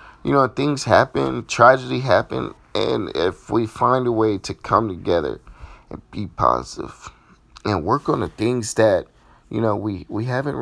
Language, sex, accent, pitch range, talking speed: English, male, American, 95-120 Hz, 165 wpm